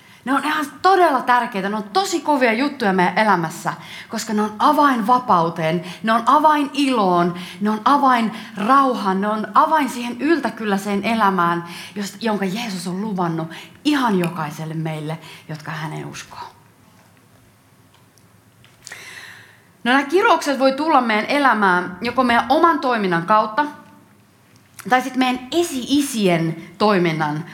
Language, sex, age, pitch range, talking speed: Finnish, female, 30-49, 180-245 Hz, 125 wpm